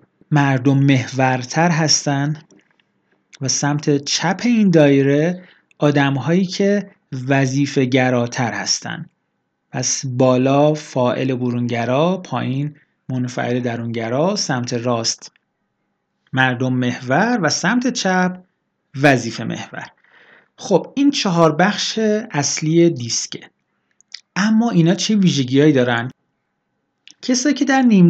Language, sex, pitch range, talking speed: Persian, male, 130-185 Hz, 95 wpm